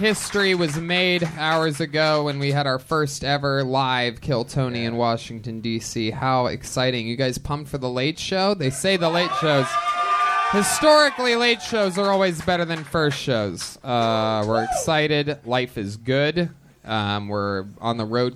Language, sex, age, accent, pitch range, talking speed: English, male, 20-39, American, 125-175 Hz, 165 wpm